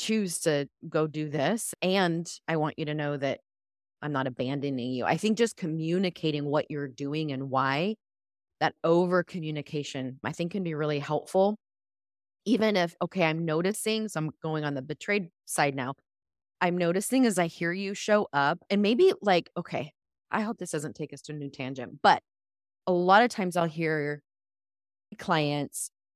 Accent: American